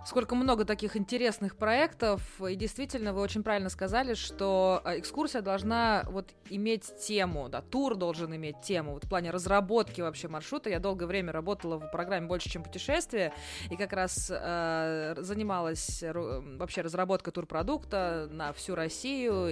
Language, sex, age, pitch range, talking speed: Russian, female, 20-39, 170-210 Hz, 150 wpm